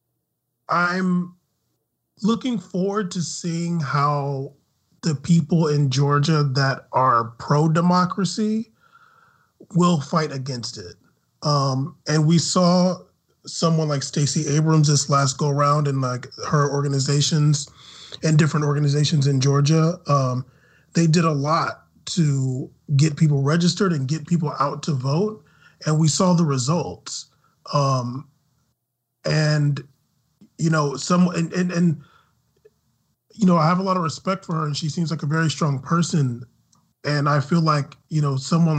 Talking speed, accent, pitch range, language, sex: 140 wpm, American, 145-175 Hz, English, male